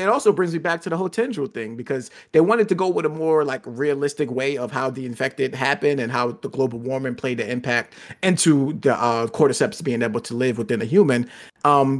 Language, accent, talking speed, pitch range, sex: English, American, 230 wpm, 120-175 Hz, male